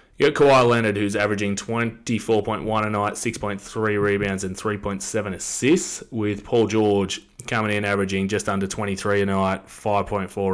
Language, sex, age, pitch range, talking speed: English, male, 20-39, 95-110 Hz, 150 wpm